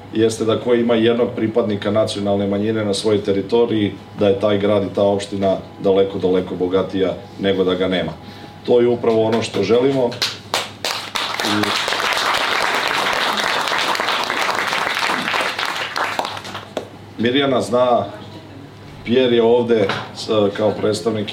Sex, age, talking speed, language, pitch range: male, 40-59, 105 wpm, Czech, 100-115 Hz